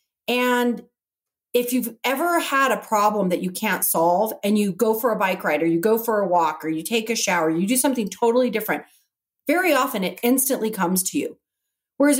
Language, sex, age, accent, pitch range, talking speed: English, female, 40-59, American, 190-275 Hz, 205 wpm